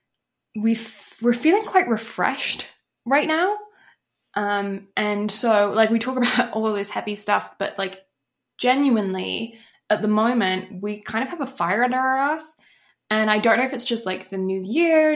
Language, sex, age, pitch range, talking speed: English, female, 10-29, 195-245 Hz, 175 wpm